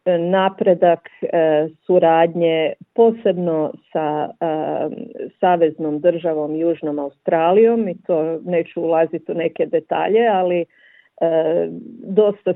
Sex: female